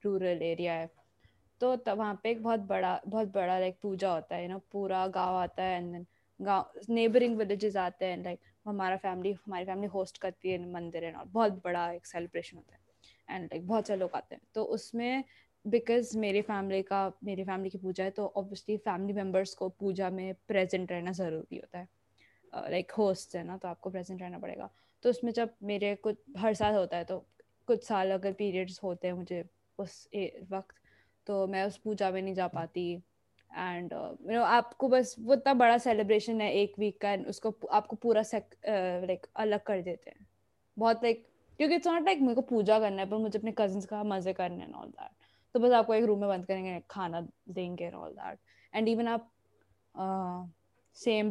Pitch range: 185-220 Hz